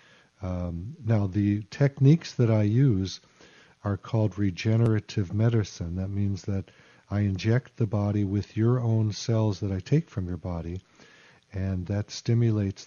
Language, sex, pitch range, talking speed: English, male, 95-115 Hz, 145 wpm